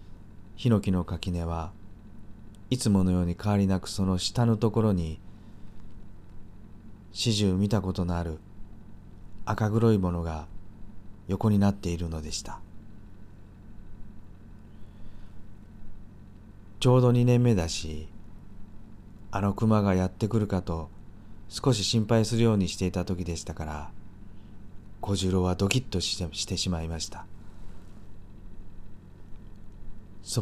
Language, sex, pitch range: Japanese, male, 95-105 Hz